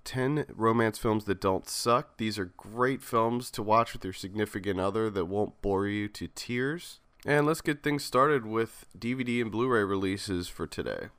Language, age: English, 20-39